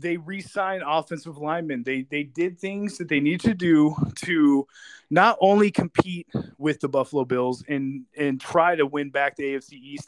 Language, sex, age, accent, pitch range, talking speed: English, male, 20-39, American, 140-185 Hz, 180 wpm